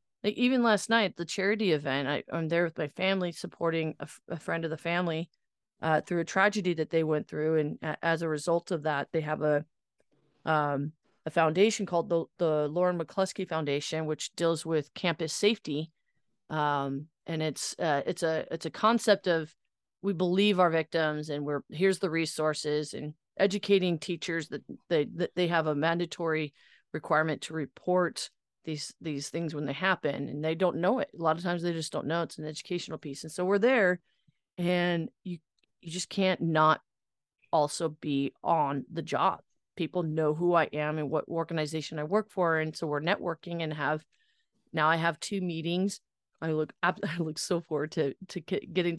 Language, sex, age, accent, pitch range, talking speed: English, female, 30-49, American, 155-180 Hz, 190 wpm